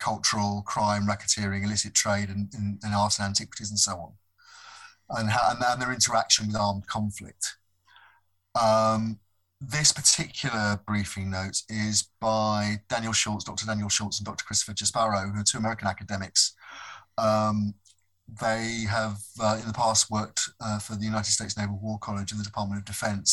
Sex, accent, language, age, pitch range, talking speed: male, British, English, 30-49, 100-110 Hz, 160 wpm